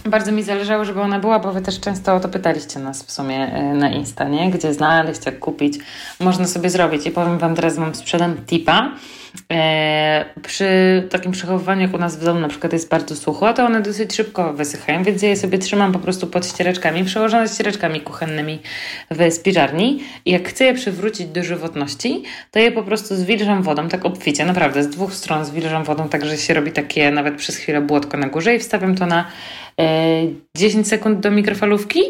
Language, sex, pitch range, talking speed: Polish, female, 160-210 Hz, 200 wpm